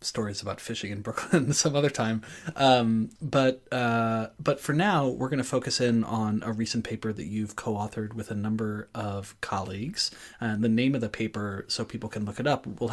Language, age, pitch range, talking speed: English, 30-49, 110-130 Hz, 205 wpm